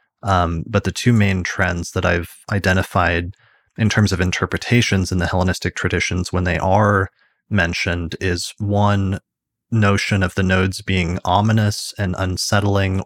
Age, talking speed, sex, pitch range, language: 30-49, 145 wpm, male, 90-100 Hz, English